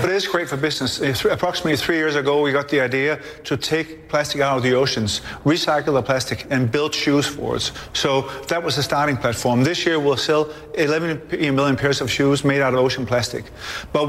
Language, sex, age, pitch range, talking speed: English, male, 40-59, 135-155 Hz, 215 wpm